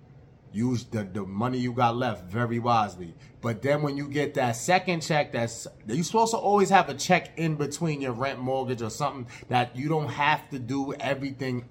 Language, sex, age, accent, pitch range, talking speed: English, male, 30-49, American, 120-150 Hz, 200 wpm